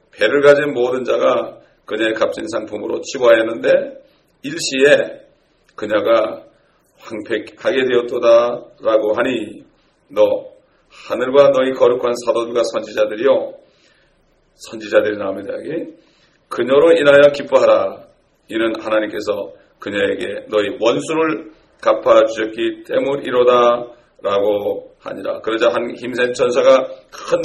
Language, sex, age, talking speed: English, male, 40-59, 85 wpm